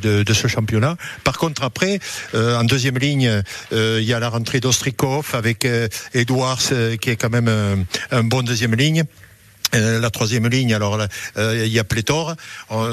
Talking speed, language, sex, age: 180 wpm, French, male, 60-79